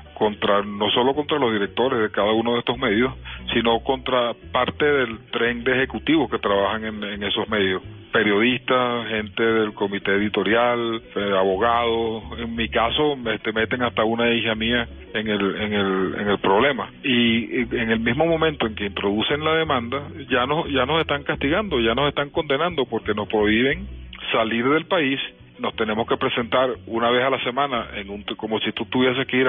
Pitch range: 105-125 Hz